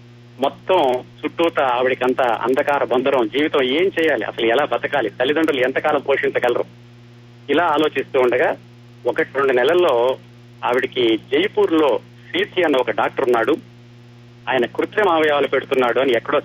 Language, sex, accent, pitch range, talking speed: Telugu, male, native, 120-135 Hz, 125 wpm